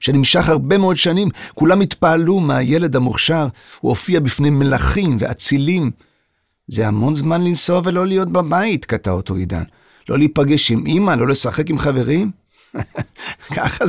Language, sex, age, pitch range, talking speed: Hebrew, male, 50-69, 135-180 Hz, 140 wpm